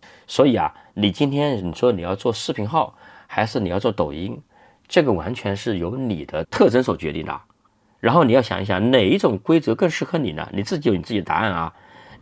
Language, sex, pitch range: Chinese, male, 95-125 Hz